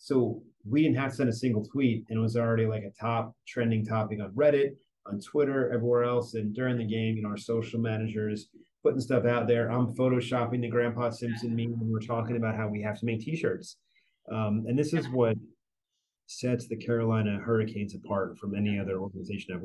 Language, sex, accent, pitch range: English, male, American, 105-120 Hz